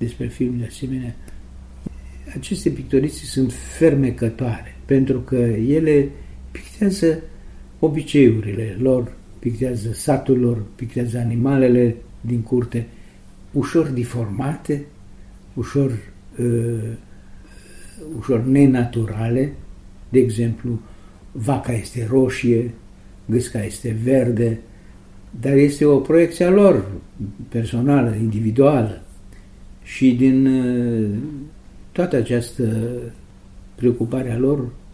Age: 60-79